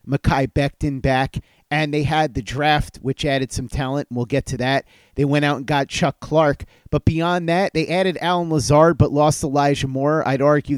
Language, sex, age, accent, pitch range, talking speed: English, male, 30-49, American, 135-160 Hz, 205 wpm